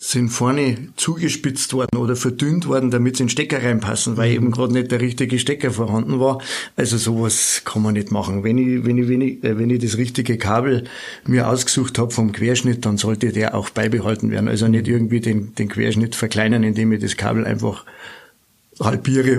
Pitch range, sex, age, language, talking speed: 115-130 Hz, male, 50-69, German, 195 wpm